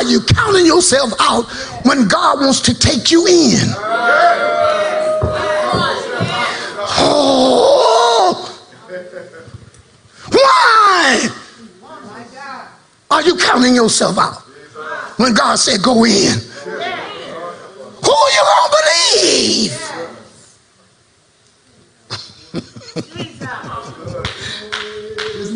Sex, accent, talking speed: male, American, 75 wpm